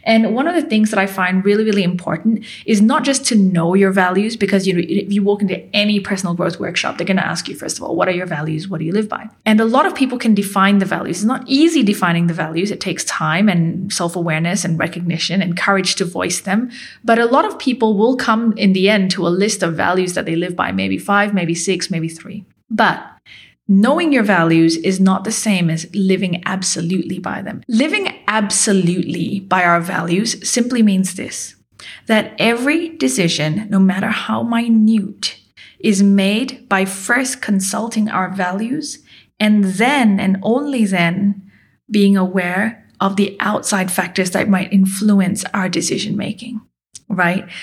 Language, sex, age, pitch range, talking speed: English, female, 30-49, 185-215 Hz, 190 wpm